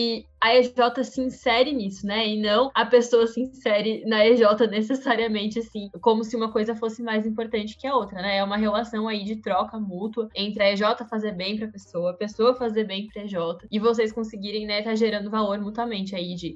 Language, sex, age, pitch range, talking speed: Portuguese, female, 10-29, 200-230 Hz, 210 wpm